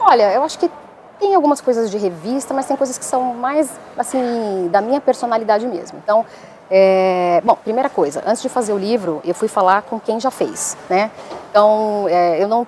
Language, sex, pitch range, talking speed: Portuguese, female, 195-245 Hz, 200 wpm